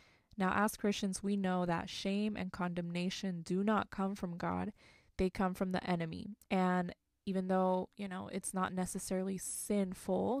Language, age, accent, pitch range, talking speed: English, 20-39, American, 180-200 Hz, 160 wpm